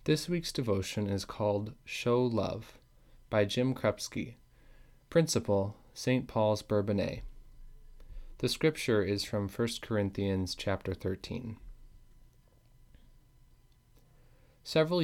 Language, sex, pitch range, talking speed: English, male, 105-125 Hz, 90 wpm